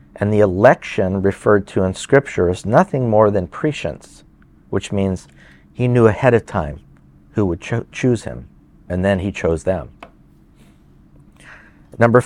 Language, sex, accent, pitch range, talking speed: English, male, American, 90-125 Hz, 140 wpm